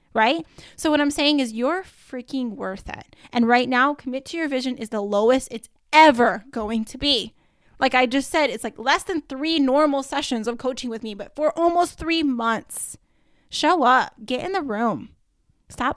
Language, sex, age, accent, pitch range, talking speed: English, female, 10-29, American, 225-280 Hz, 195 wpm